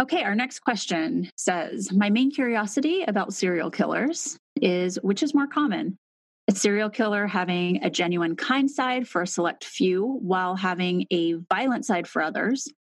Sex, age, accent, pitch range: female, 30-49, American, 180-230 Hz